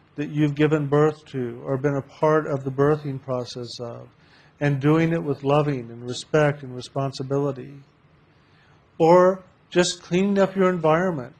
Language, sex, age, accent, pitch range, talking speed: English, male, 50-69, American, 140-170 Hz, 155 wpm